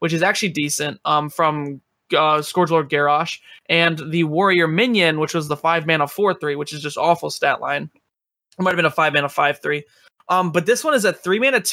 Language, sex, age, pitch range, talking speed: English, male, 20-39, 150-175 Hz, 205 wpm